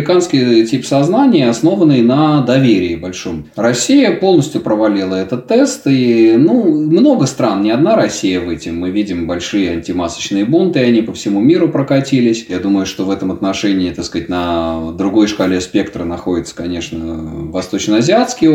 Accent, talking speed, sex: native, 150 wpm, male